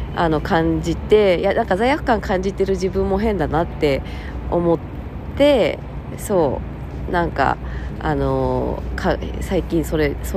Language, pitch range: Japanese, 150-220 Hz